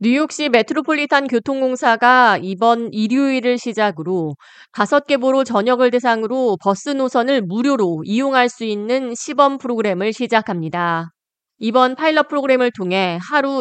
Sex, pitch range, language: female, 195-255 Hz, Korean